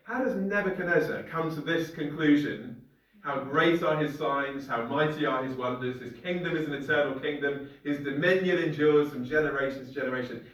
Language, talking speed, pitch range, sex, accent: English, 170 wpm, 140-190 Hz, male, British